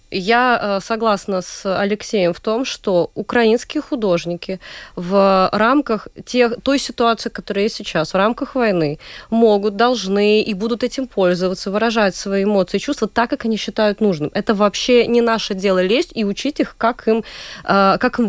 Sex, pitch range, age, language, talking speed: female, 185-235 Hz, 20-39, Russian, 155 wpm